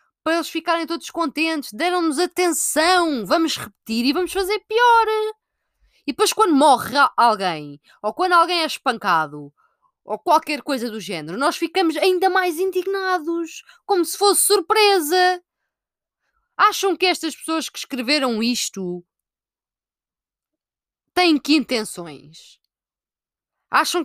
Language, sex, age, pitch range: Portuguese, female, 20-39, 220-330 Hz